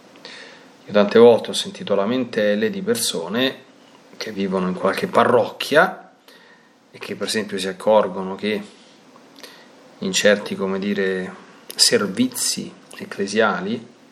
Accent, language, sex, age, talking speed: native, Italian, male, 30-49, 105 wpm